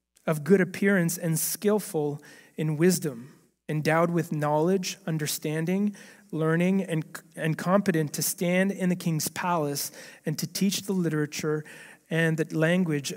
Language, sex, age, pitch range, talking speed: English, male, 30-49, 155-190 Hz, 130 wpm